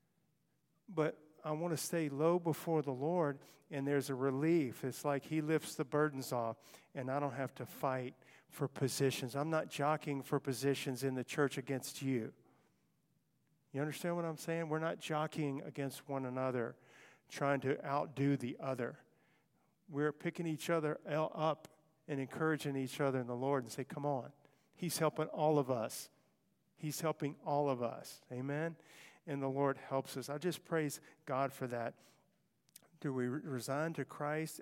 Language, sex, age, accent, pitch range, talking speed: English, male, 50-69, American, 130-155 Hz, 170 wpm